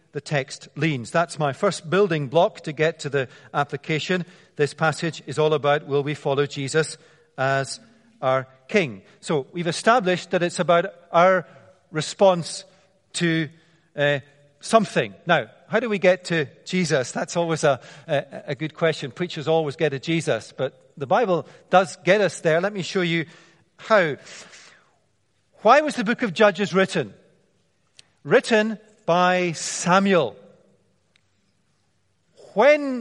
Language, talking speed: English, 140 wpm